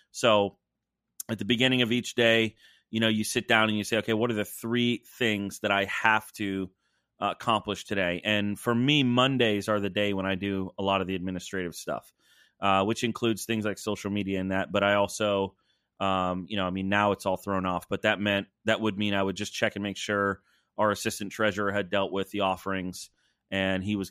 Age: 30-49